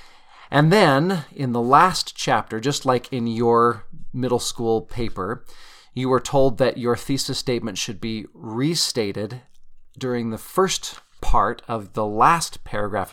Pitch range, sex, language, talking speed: 105-135 Hz, male, English, 140 wpm